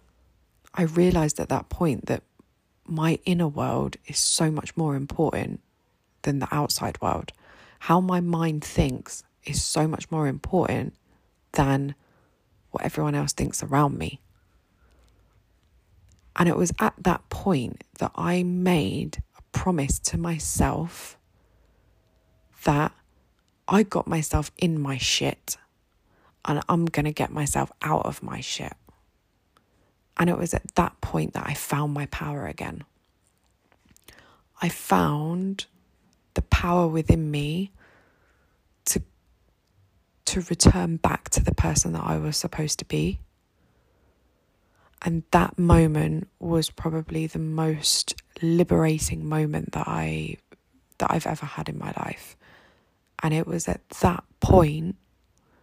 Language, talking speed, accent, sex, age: English, 130 wpm, British, female, 20-39